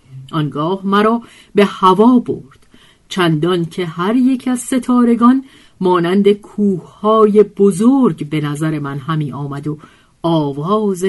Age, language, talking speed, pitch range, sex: 50-69, Persian, 115 wpm, 155-230 Hz, female